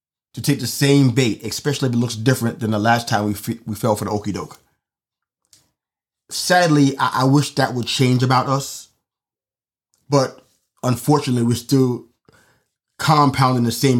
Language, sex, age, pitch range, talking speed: English, male, 30-49, 115-140 Hz, 165 wpm